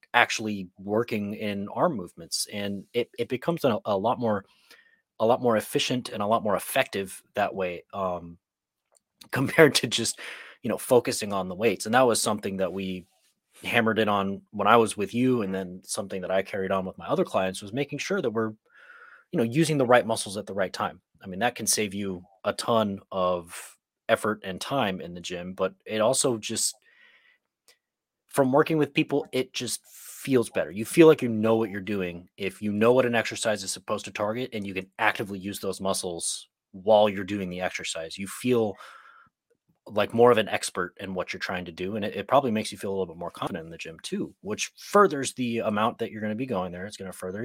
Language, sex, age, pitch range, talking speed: English, male, 30-49, 95-120 Hz, 220 wpm